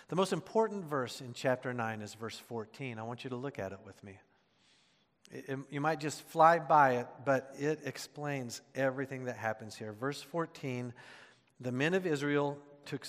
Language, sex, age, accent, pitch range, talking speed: English, male, 50-69, American, 125-155 Hz, 180 wpm